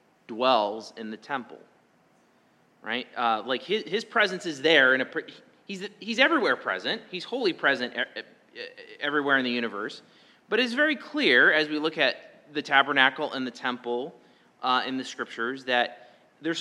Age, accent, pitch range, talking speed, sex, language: 30-49, American, 115-160 Hz, 165 wpm, male, English